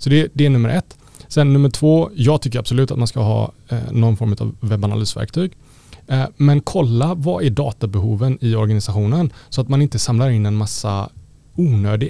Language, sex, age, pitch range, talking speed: Swedish, male, 30-49, 110-140 Hz, 180 wpm